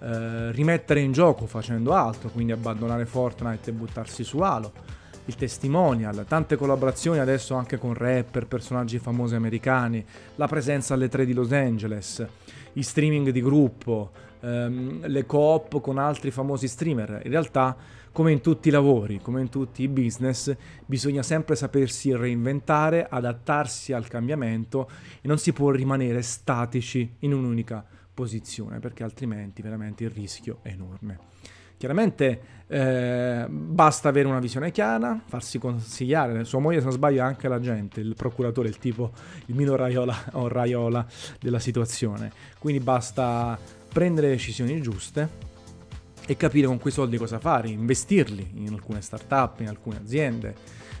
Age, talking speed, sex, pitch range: 30-49, 150 wpm, male, 115-140 Hz